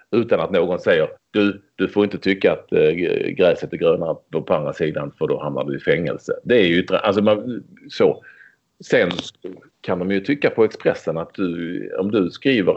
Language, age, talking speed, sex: English, 30-49, 190 wpm, male